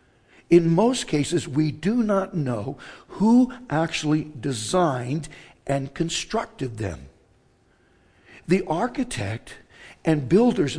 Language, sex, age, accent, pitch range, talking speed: English, male, 60-79, American, 130-165 Hz, 95 wpm